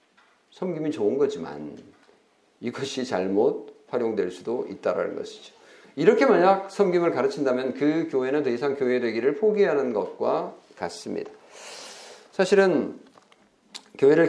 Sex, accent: male, native